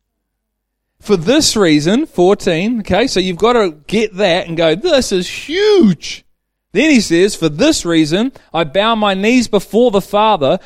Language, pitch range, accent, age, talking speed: English, 180-240 Hz, Australian, 30-49, 165 wpm